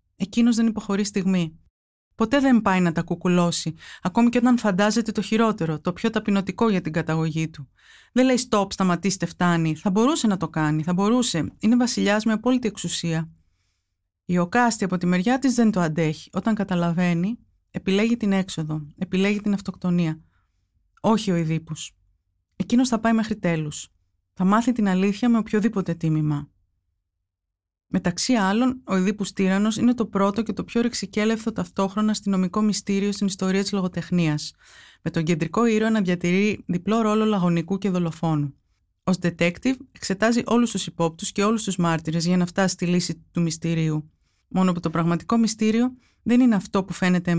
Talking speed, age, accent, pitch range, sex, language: 165 wpm, 30-49, native, 165-215 Hz, female, Greek